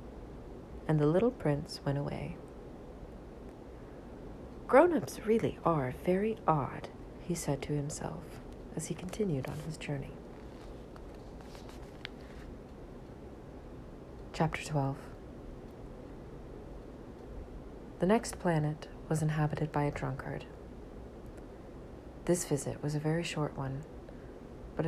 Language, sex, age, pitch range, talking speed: English, female, 40-59, 140-170 Hz, 95 wpm